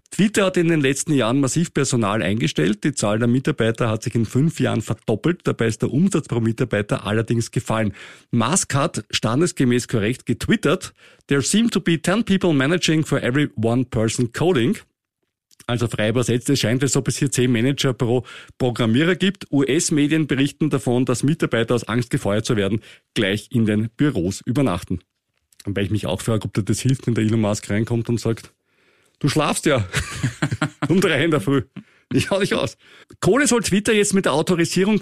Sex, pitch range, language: male, 115-155 Hz, German